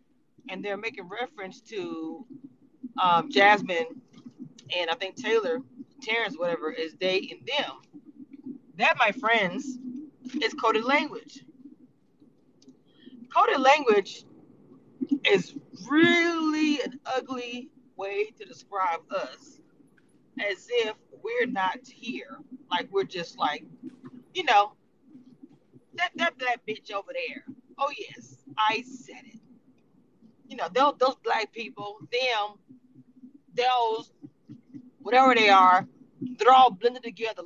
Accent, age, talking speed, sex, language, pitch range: American, 30-49, 110 wpm, female, English, 230-280 Hz